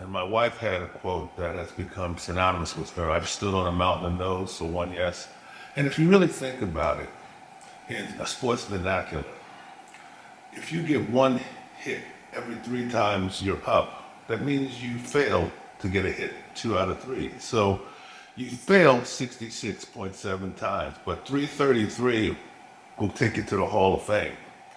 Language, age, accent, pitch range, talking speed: English, 50-69, American, 95-130 Hz, 170 wpm